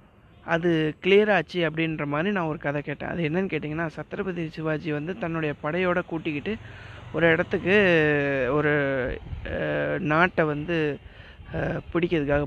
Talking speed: 110 wpm